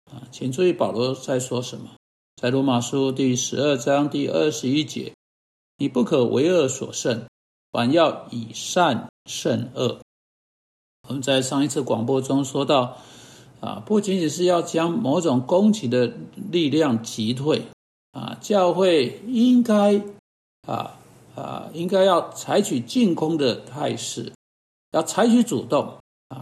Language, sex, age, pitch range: Chinese, male, 60-79, 125-195 Hz